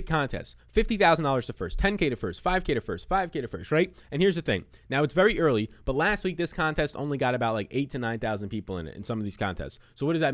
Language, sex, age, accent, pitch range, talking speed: English, male, 20-39, American, 125-180 Hz, 275 wpm